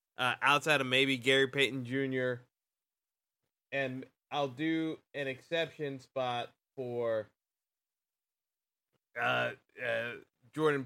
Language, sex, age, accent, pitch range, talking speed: English, male, 20-39, American, 125-145 Hz, 95 wpm